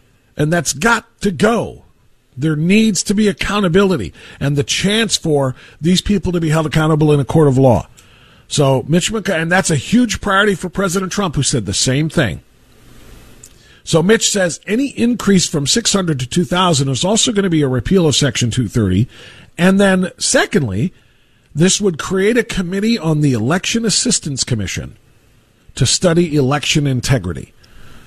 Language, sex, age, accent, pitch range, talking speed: English, male, 50-69, American, 135-190 Hz, 165 wpm